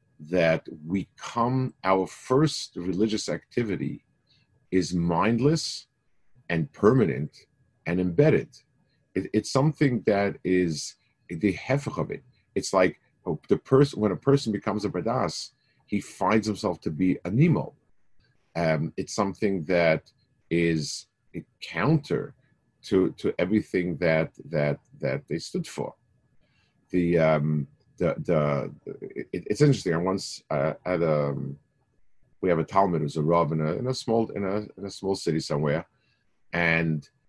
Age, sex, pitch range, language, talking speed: 50-69, male, 80-105 Hz, English, 140 wpm